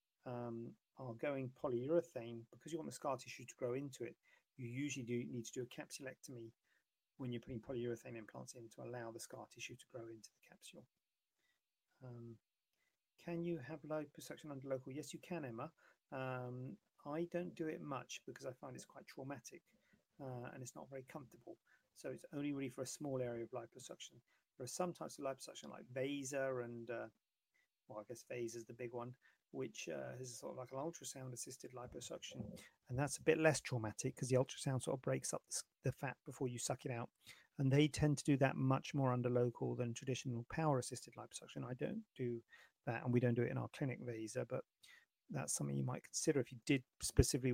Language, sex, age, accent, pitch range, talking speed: English, male, 40-59, British, 120-140 Hz, 205 wpm